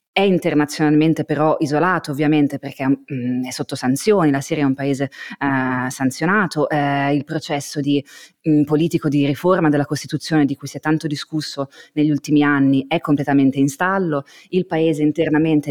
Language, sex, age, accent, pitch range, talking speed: Italian, female, 20-39, native, 145-165 Hz, 155 wpm